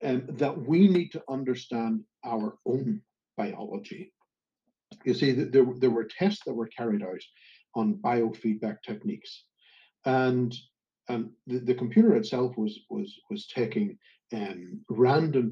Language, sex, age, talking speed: English, male, 50-69, 130 wpm